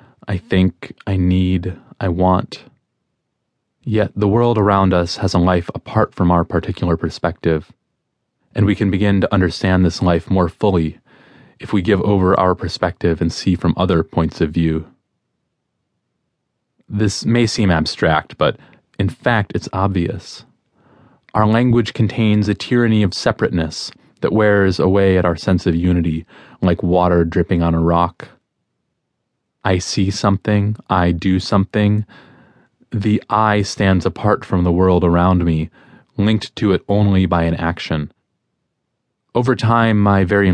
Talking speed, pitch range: 145 wpm, 85-105 Hz